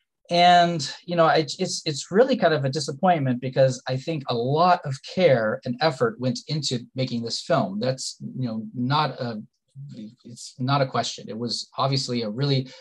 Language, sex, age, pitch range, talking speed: English, male, 30-49, 125-165 Hz, 180 wpm